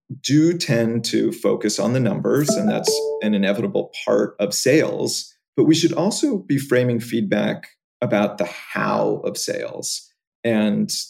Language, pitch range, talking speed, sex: English, 110-170 Hz, 145 wpm, male